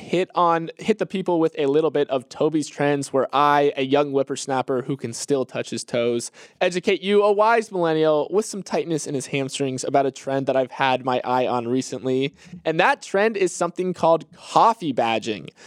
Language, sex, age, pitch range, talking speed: English, male, 20-39, 135-175 Hz, 200 wpm